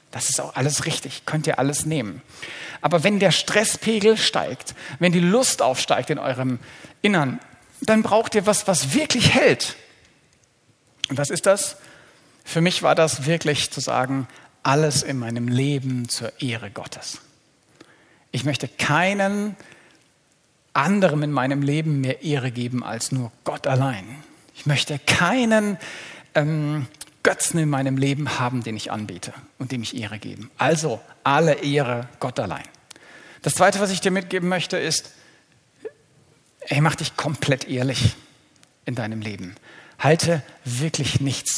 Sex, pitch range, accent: male, 130-170 Hz, German